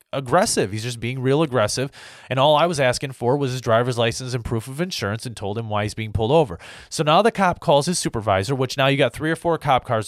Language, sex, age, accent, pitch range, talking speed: English, male, 30-49, American, 120-165 Hz, 260 wpm